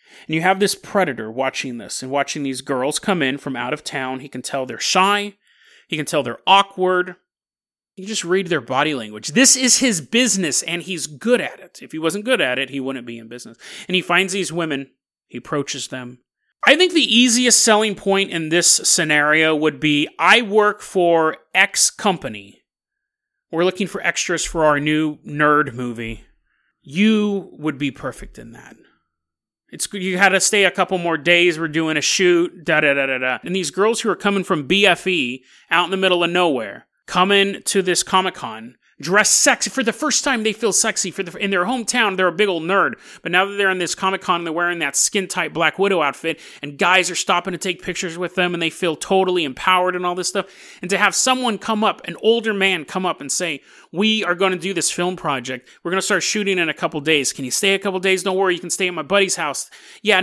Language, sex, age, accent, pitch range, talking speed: English, male, 30-49, American, 150-195 Hz, 220 wpm